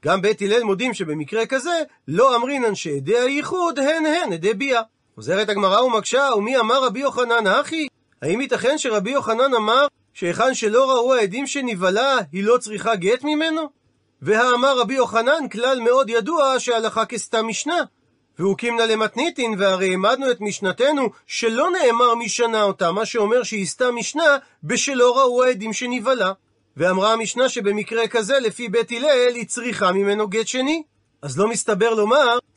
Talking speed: 150 wpm